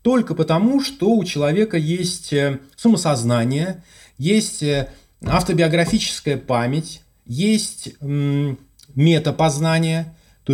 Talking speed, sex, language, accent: 75 wpm, male, Russian, native